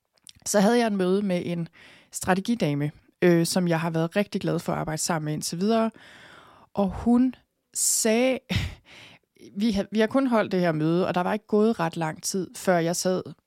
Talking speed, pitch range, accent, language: 190 wpm, 170-205 Hz, native, Danish